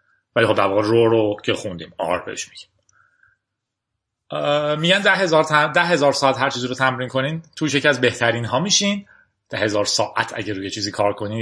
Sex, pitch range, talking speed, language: male, 125-170 Hz, 175 wpm, Persian